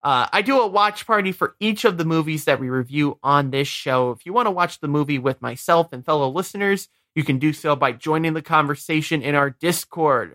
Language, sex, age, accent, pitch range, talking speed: English, male, 30-49, American, 130-170 Hz, 230 wpm